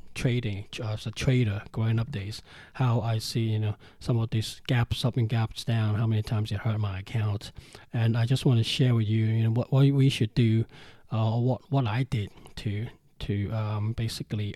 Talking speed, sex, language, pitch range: 215 wpm, male, English, 110-130 Hz